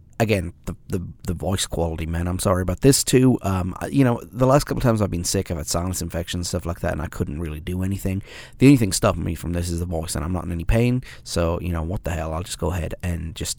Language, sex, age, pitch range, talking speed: English, male, 30-49, 90-110 Hz, 285 wpm